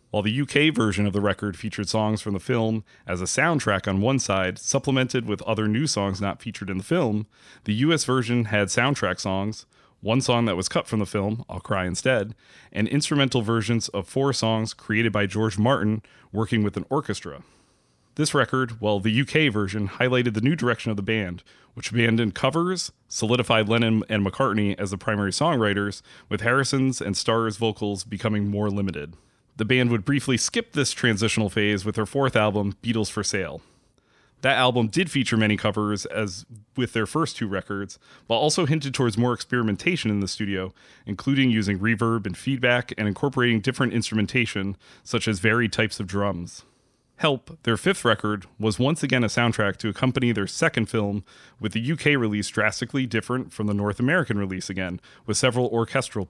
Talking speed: 180 wpm